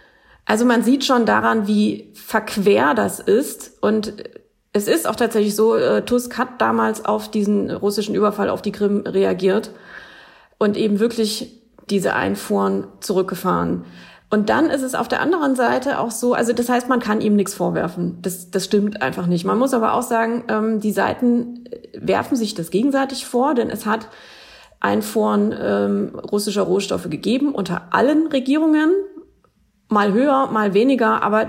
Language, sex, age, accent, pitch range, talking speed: German, female, 30-49, German, 195-245 Hz, 160 wpm